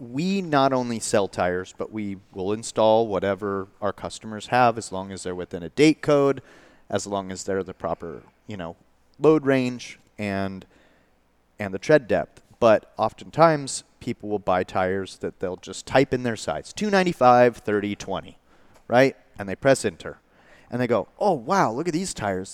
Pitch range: 100-125 Hz